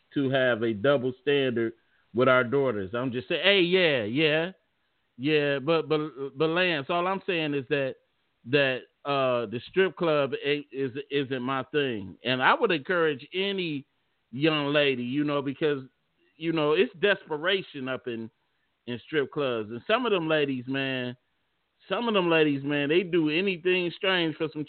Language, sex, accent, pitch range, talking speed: English, male, American, 135-170 Hz, 170 wpm